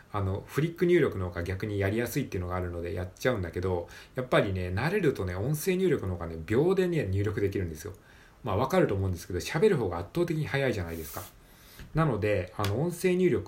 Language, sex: Japanese, male